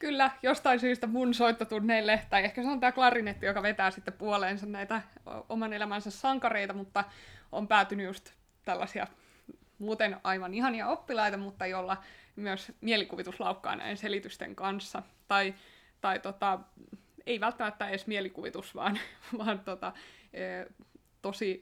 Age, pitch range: 20-39, 200-250 Hz